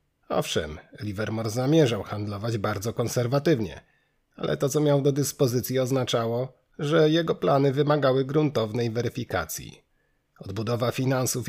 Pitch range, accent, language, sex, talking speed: 115-140 Hz, native, Polish, male, 110 wpm